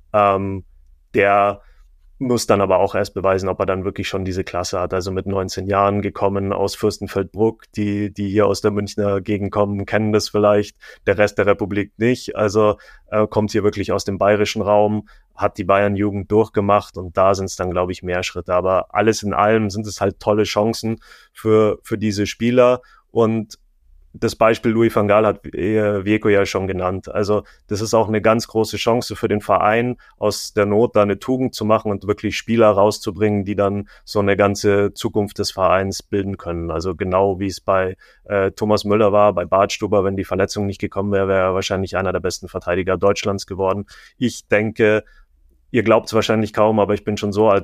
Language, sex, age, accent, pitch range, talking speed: German, male, 30-49, German, 95-105 Hz, 200 wpm